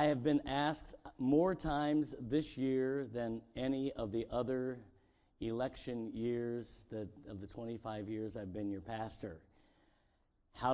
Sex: male